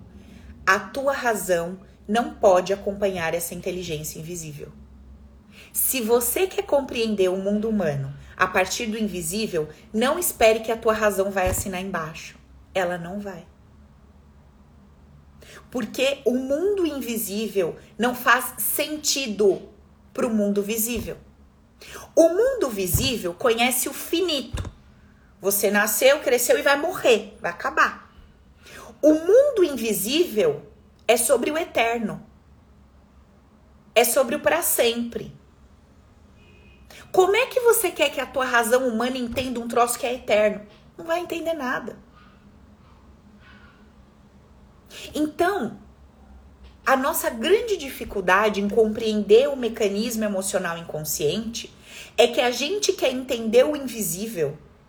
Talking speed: 120 wpm